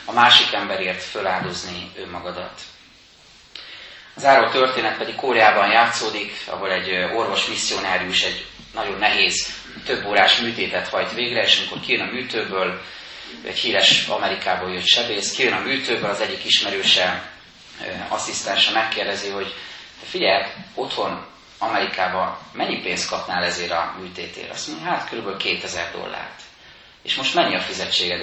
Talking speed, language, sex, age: 130 wpm, Hungarian, male, 30-49